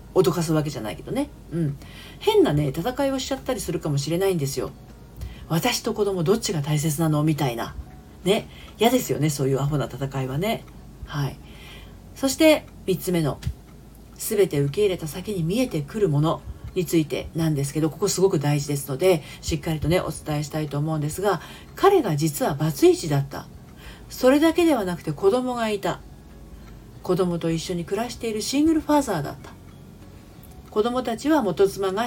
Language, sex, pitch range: Japanese, female, 150-245 Hz